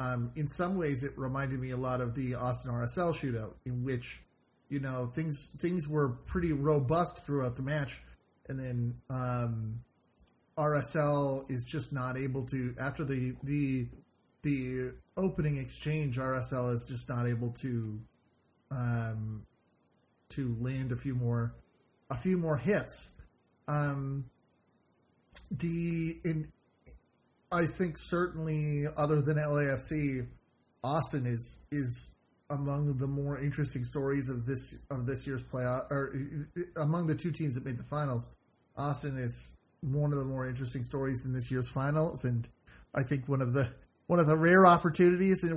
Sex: male